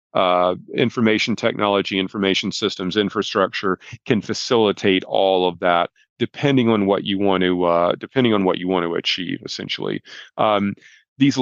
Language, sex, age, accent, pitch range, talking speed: English, male, 40-59, American, 95-115 Hz, 145 wpm